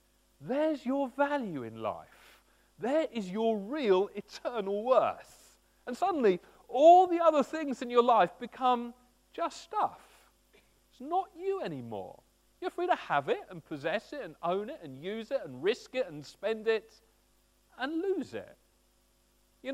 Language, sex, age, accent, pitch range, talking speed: English, male, 40-59, British, 185-265 Hz, 155 wpm